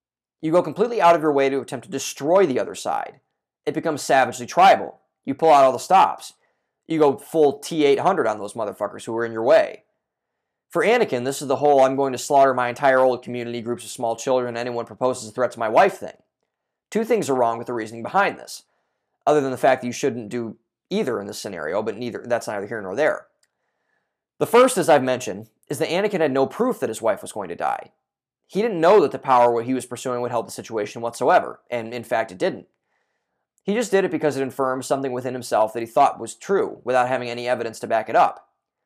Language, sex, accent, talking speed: English, male, American, 235 wpm